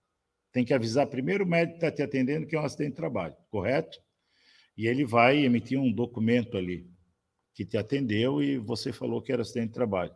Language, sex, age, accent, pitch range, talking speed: Portuguese, male, 50-69, Brazilian, 120-150 Hz, 205 wpm